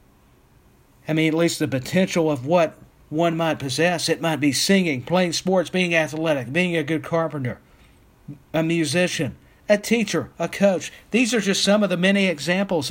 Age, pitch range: 50-69, 145-175 Hz